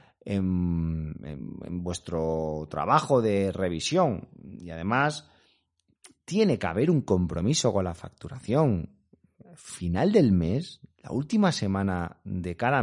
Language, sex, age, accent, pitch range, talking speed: Spanish, male, 30-49, Spanish, 90-150 Hz, 110 wpm